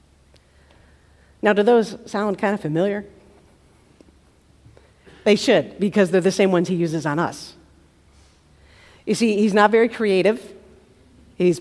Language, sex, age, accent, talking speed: English, female, 50-69, American, 130 wpm